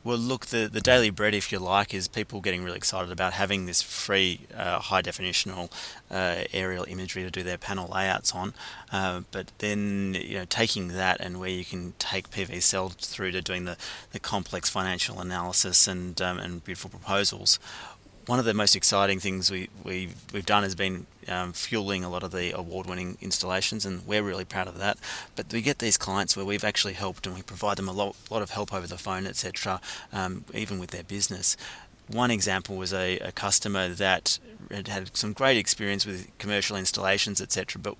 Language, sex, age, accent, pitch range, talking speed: English, male, 30-49, Australian, 95-105 Hz, 195 wpm